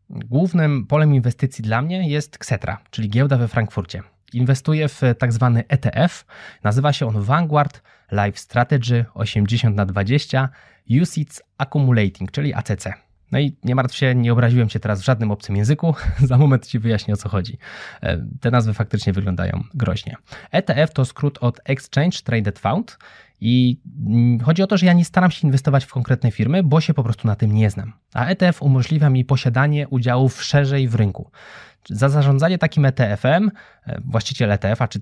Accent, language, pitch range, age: native, Polish, 115-150 Hz, 20-39